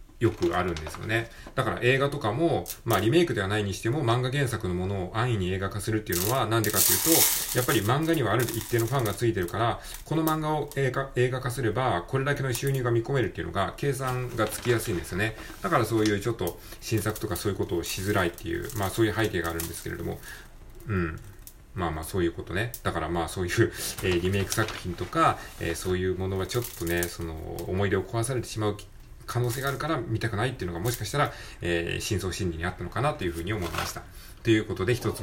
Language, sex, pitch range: Japanese, male, 90-120 Hz